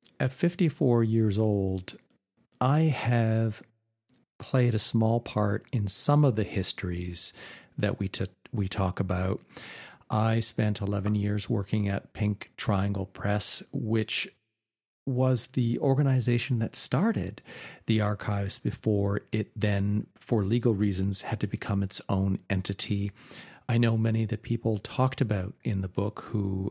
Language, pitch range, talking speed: English, 100-125 Hz, 140 wpm